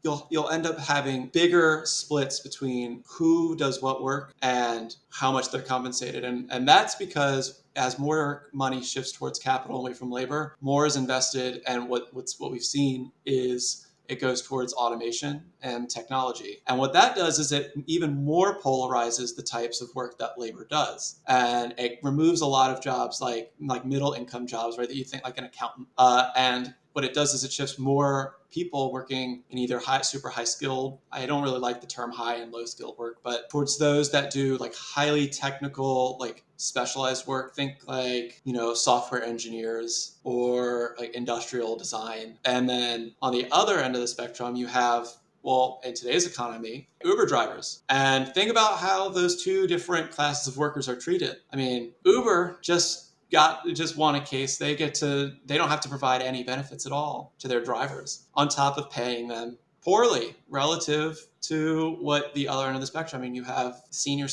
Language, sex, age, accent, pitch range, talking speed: English, male, 30-49, American, 125-145 Hz, 190 wpm